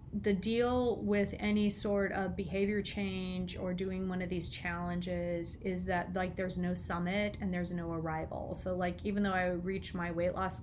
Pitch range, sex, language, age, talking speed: 175-205 Hz, female, English, 30-49, 185 wpm